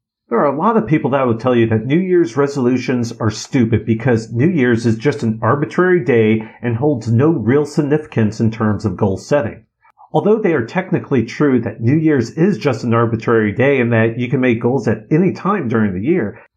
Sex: male